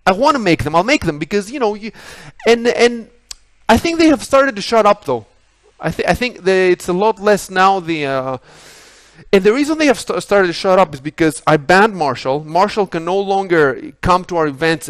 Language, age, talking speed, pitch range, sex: English, 30-49, 235 wpm, 170-235 Hz, male